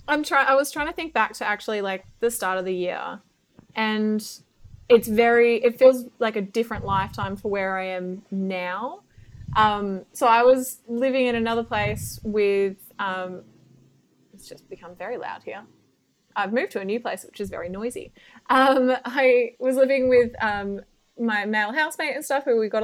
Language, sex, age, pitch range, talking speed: English, female, 20-39, 190-240 Hz, 185 wpm